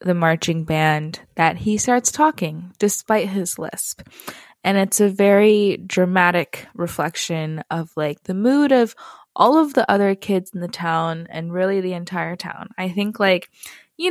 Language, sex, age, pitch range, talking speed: English, female, 20-39, 165-200 Hz, 160 wpm